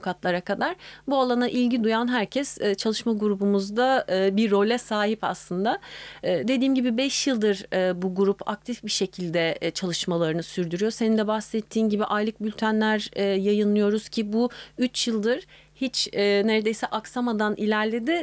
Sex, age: female, 40-59